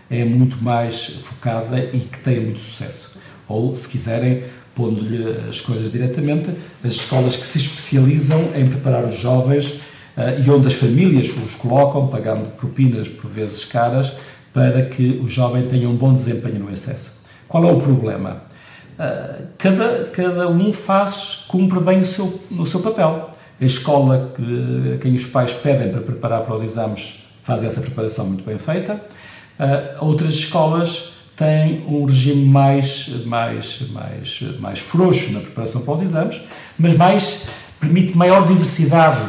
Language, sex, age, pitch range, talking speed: Portuguese, male, 50-69, 125-165 Hz, 155 wpm